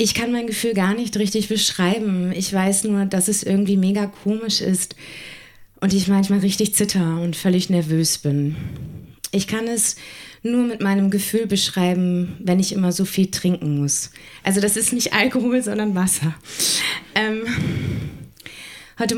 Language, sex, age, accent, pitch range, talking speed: German, female, 20-39, German, 170-205 Hz, 155 wpm